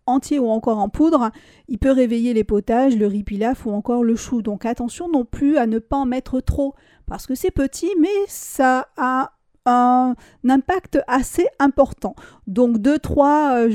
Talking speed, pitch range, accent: 170 wpm, 220-265 Hz, French